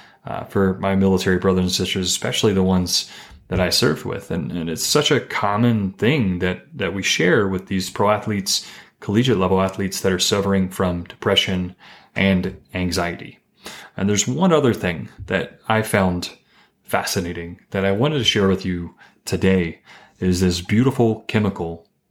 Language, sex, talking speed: English, male, 155 wpm